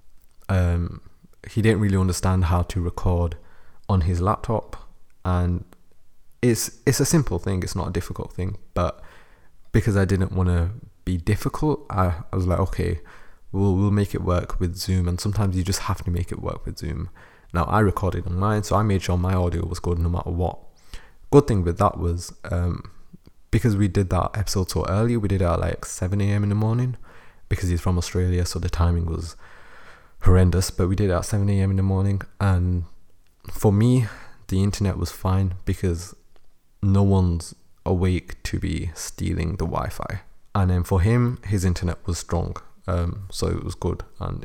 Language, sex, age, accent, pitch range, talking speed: English, male, 20-39, British, 85-100 Hz, 185 wpm